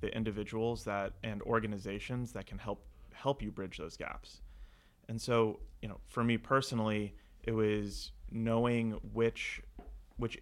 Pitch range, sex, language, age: 100-115 Hz, male, English, 30-49